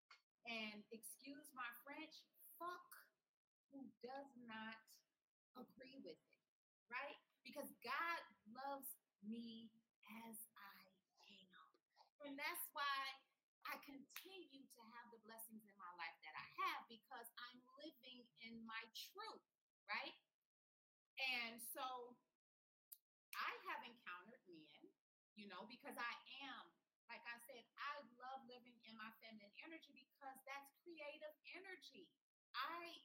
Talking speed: 110 wpm